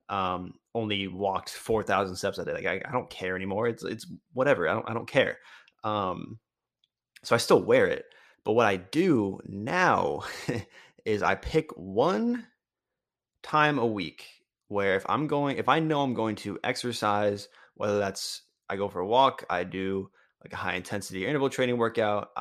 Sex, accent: male, American